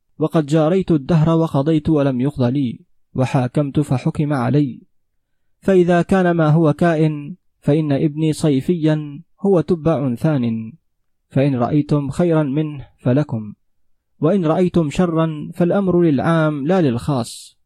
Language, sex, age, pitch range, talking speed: Arabic, male, 30-49, 130-160 Hz, 110 wpm